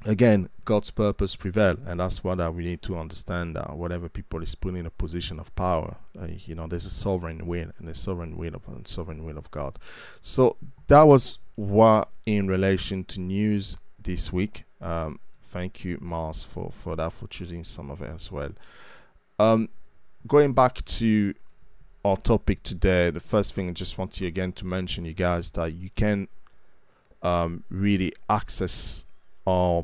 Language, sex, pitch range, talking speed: English, male, 85-100 Hz, 180 wpm